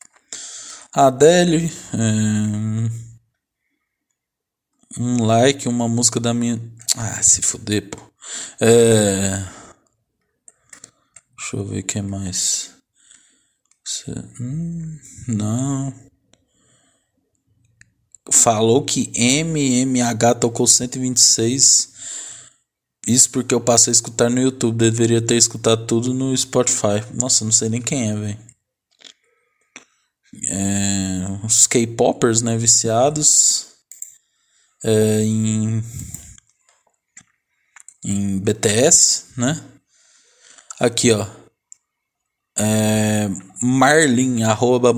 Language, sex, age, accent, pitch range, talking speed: Portuguese, male, 20-39, Brazilian, 110-130 Hz, 85 wpm